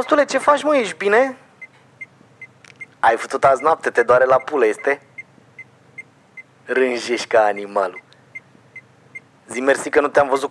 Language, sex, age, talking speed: Romanian, male, 30-49, 135 wpm